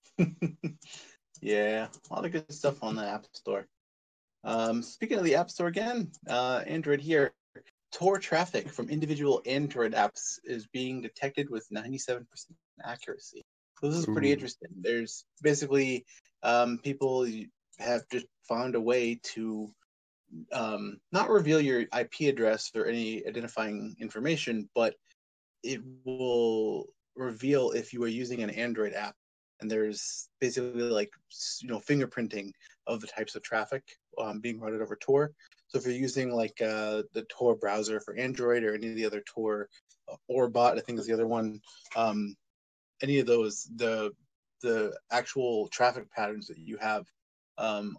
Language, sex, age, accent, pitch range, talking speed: English, male, 20-39, American, 110-140 Hz, 155 wpm